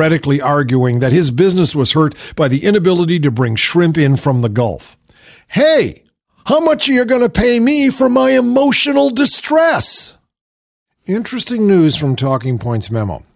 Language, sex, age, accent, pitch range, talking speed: English, male, 50-69, American, 110-165 Hz, 160 wpm